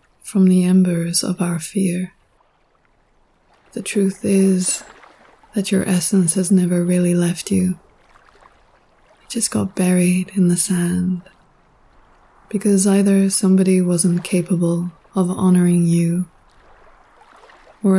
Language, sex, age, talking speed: English, female, 20-39, 110 wpm